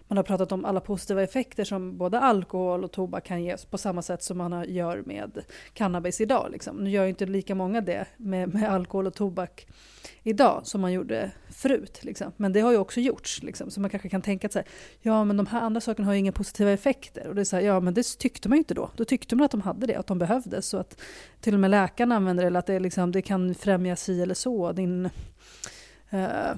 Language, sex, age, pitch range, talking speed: Swedish, female, 30-49, 185-210 Hz, 240 wpm